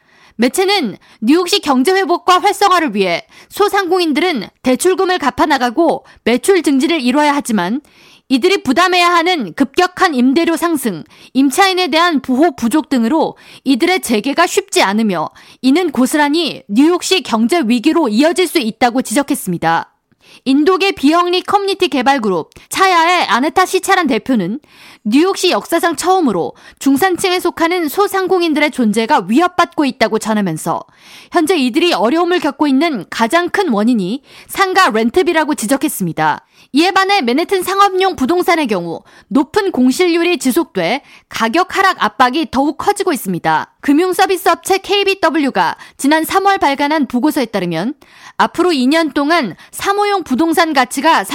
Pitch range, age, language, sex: 255-360 Hz, 20-39, Korean, female